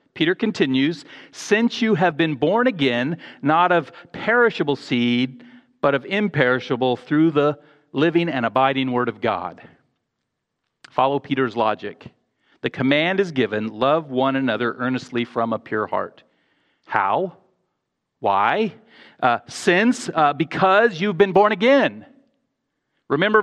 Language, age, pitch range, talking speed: English, 40-59, 145-210 Hz, 125 wpm